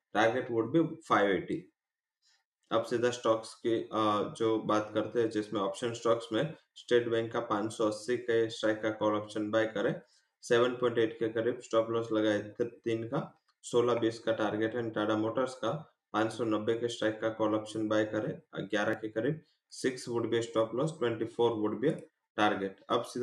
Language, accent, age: English, Indian, 20-39